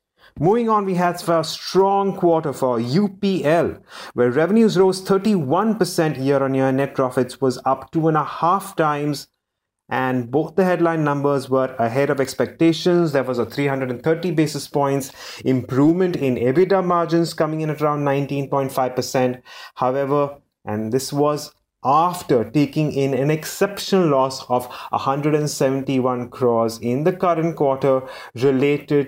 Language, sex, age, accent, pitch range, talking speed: English, male, 30-49, Indian, 130-170 Hz, 135 wpm